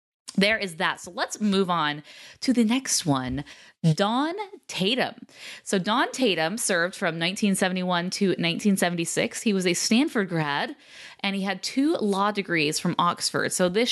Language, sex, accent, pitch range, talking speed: English, female, American, 165-210 Hz, 155 wpm